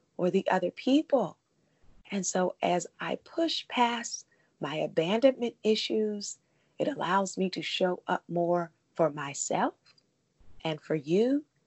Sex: female